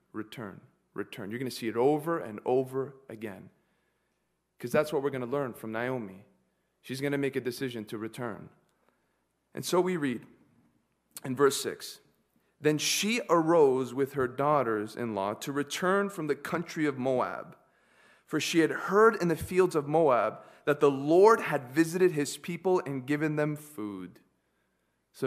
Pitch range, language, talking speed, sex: 130-175 Hz, English, 165 wpm, male